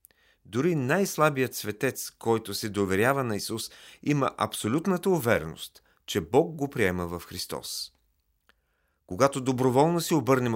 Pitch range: 95-135 Hz